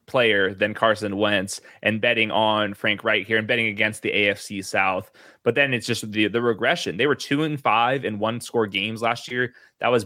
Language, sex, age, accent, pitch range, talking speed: English, male, 20-39, American, 105-125 Hz, 215 wpm